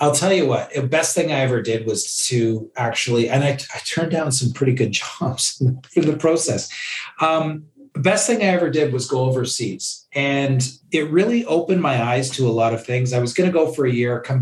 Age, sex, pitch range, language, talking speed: 40-59, male, 115-140 Hz, English, 225 wpm